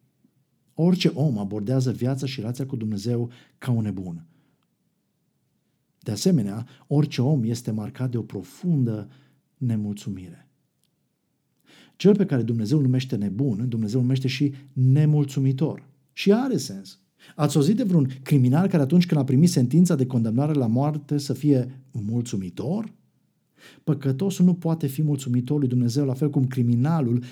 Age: 50-69